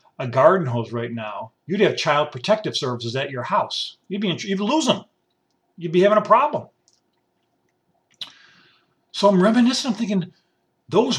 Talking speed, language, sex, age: 160 wpm, English, male, 50-69